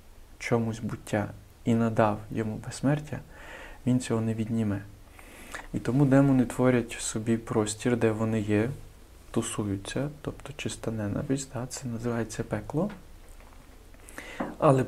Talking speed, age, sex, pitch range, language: 110 wpm, 20-39, male, 105-130 Hz, Ukrainian